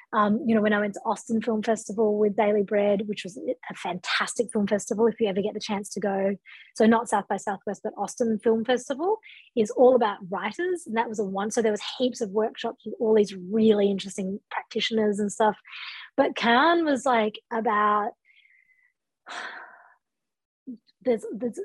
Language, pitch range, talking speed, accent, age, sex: English, 205-250 Hz, 180 wpm, Australian, 20-39, female